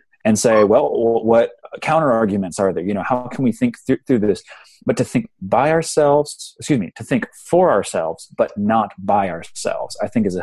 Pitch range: 100-130 Hz